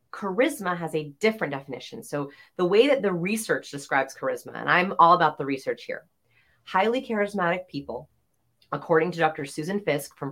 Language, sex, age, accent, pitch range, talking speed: English, female, 30-49, American, 155-220 Hz, 170 wpm